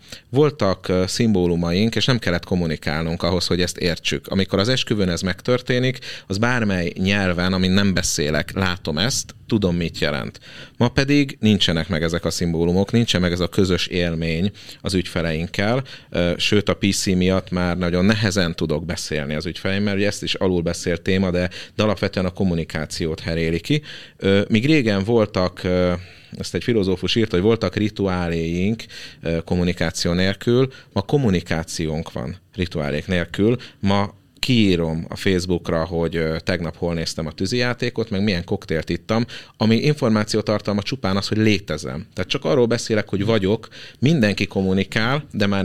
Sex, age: male, 30-49